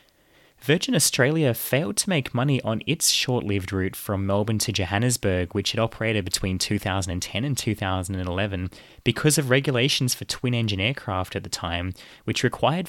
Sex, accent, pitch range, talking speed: male, Australian, 95-120 Hz, 150 wpm